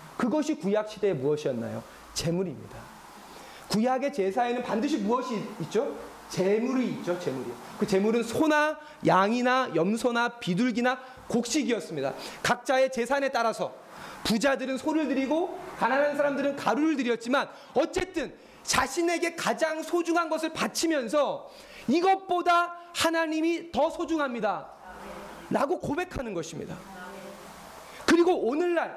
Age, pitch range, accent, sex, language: 30-49, 240-325 Hz, native, male, Korean